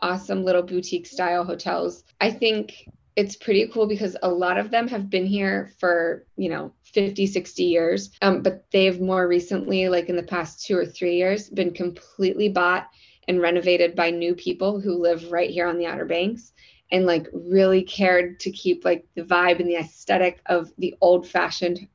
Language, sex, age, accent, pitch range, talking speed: English, female, 20-39, American, 175-195 Hz, 190 wpm